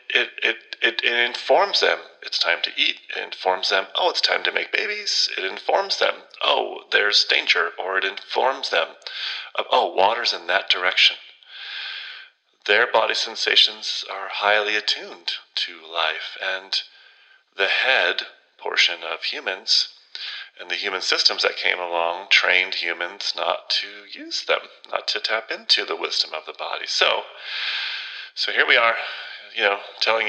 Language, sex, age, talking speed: English, male, 30-49, 155 wpm